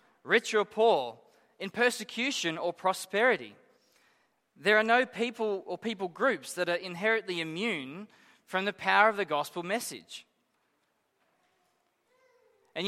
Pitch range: 180-225 Hz